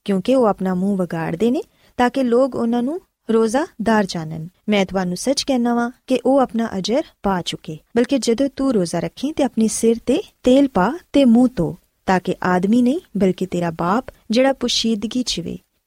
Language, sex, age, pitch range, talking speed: Punjabi, female, 20-39, 190-260 Hz, 130 wpm